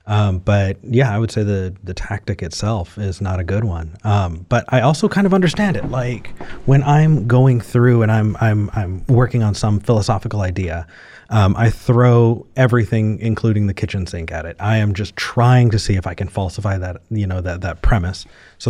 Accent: American